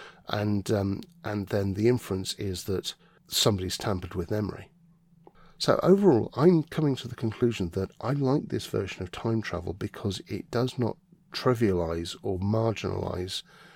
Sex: male